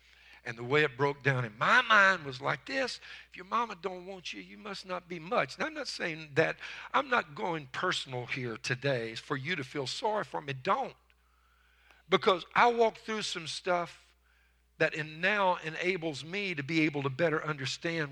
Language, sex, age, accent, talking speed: English, male, 50-69, American, 195 wpm